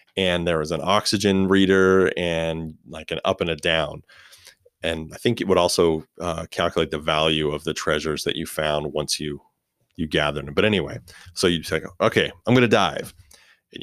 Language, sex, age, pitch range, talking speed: English, male, 30-49, 80-120 Hz, 190 wpm